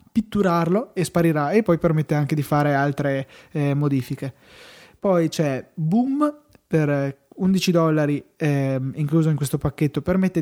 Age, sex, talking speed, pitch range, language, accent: 20-39, male, 140 wpm, 150-180 Hz, Italian, native